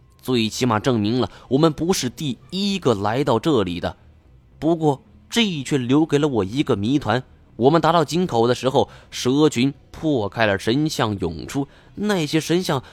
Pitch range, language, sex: 105-145 Hz, Chinese, male